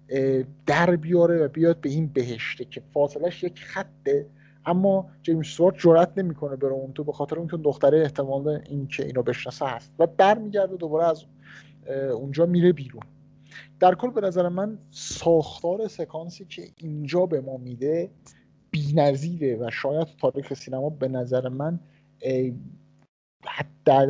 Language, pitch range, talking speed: Persian, 135-165 Hz, 150 wpm